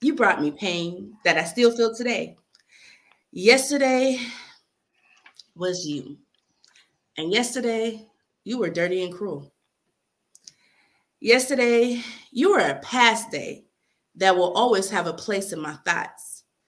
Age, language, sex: 30-49, English, female